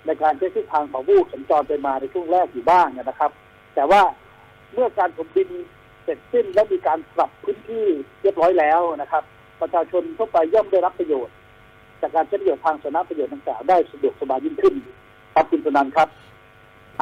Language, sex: Thai, male